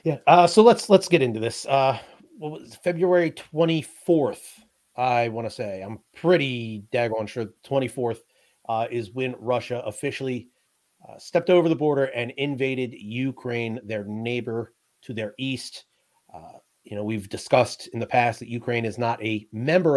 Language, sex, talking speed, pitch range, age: English, male, 160 wpm, 115-135 Hz, 30-49